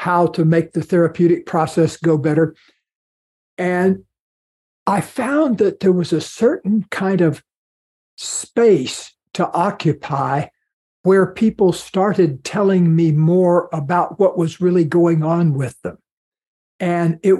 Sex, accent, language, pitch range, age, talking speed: male, American, English, 160-190 Hz, 60-79, 130 wpm